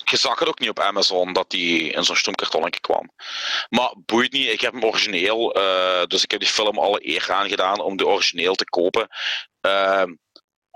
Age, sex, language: 40-59, male, Dutch